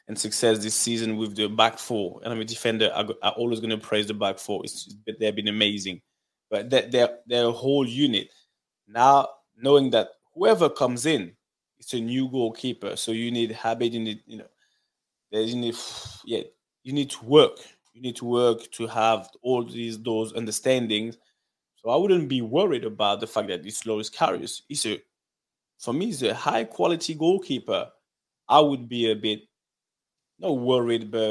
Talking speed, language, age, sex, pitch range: 180 wpm, English, 20-39, male, 110-125 Hz